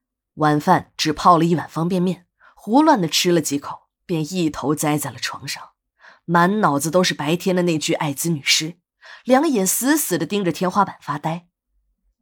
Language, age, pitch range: Chinese, 20-39, 165-260 Hz